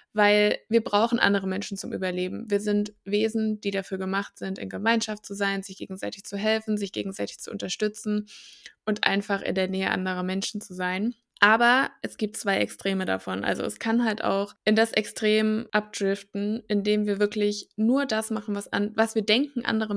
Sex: female